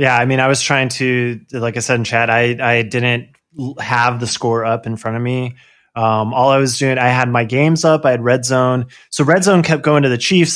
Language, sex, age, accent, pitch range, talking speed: English, male, 20-39, American, 115-140 Hz, 255 wpm